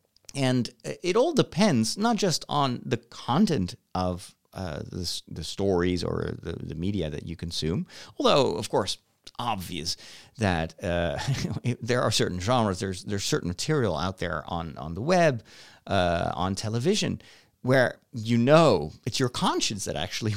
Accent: American